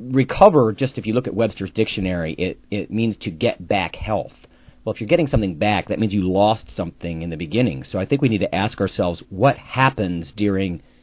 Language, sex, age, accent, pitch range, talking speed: English, male, 40-59, American, 90-120 Hz, 220 wpm